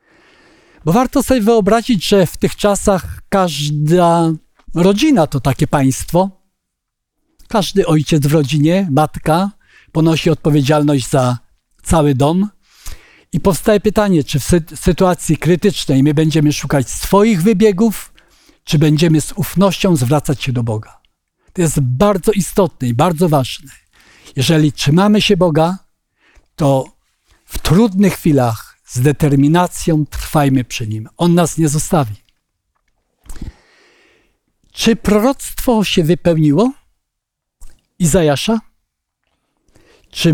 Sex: male